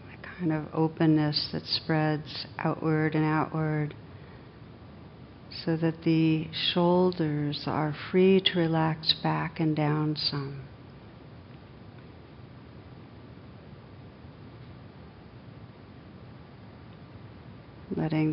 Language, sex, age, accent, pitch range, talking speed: English, female, 60-79, American, 130-165 Hz, 70 wpm